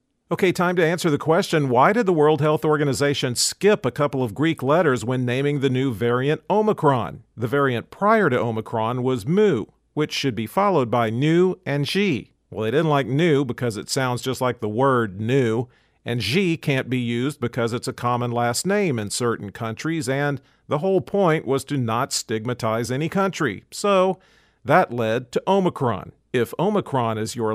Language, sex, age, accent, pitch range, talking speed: English, male, 50-69, American, 120-150 Hz, 185 wpm